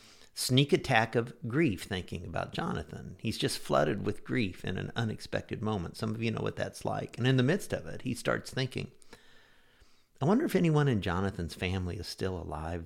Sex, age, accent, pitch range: male, 50-69, American, 95-130 Hz